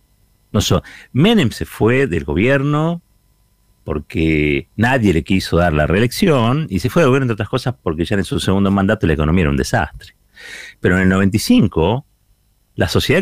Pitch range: 90-125 Hz